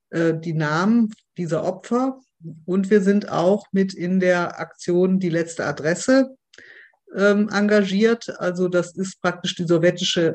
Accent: German